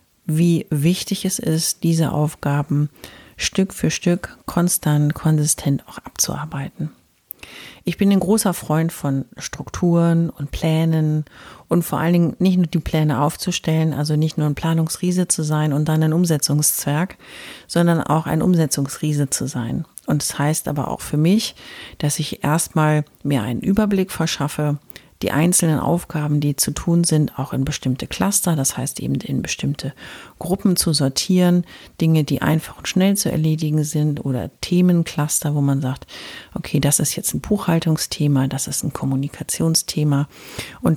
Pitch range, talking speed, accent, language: 145-170 Hz, 155 wpm, German, German